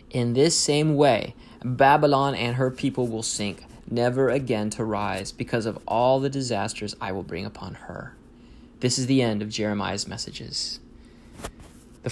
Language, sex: English, male